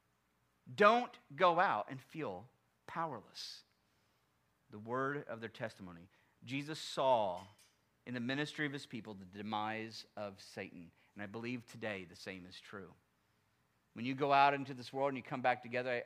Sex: male